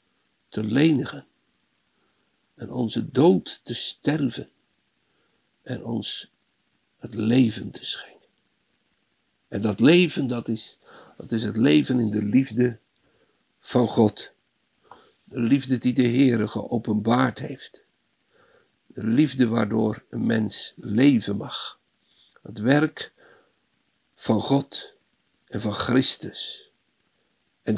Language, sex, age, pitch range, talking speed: Dutch, male, 60-79, 105-125 Hz, 105 wpm